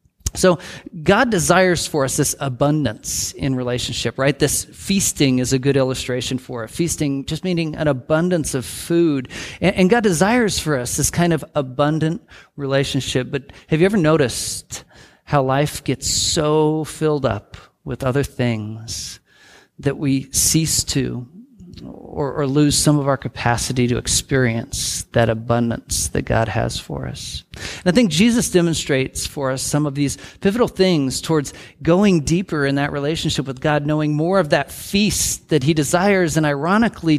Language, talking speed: English, 160 wpm